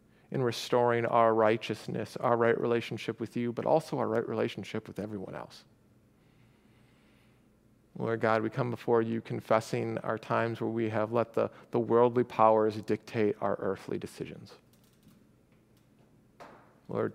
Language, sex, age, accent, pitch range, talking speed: English, male, 40-59, American, 110-120 Hz, 135 wpm